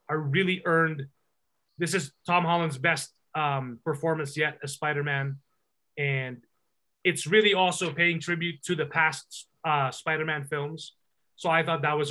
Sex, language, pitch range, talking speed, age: male, English, 145-175 Hz, 150 wpm, 20-39